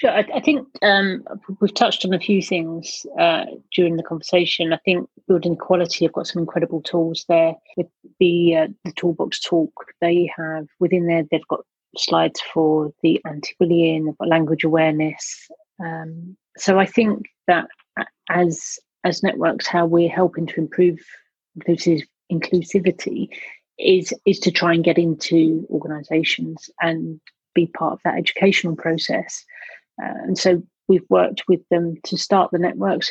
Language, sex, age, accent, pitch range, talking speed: English, female, 30-49, British, 165-185 Hz, 160 wpm